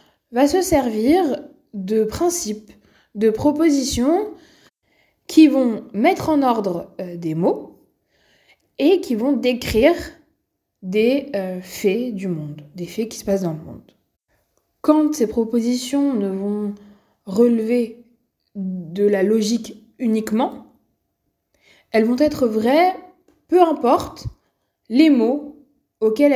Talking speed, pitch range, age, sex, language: 115 wpm, 195-275 Hz, 20-39, female, French